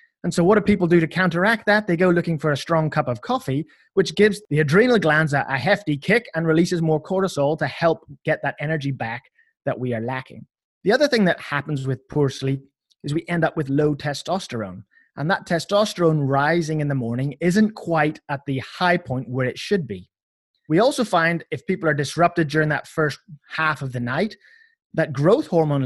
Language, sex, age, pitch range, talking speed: English, male, 20-39, 135-175 Hz, 205 wpm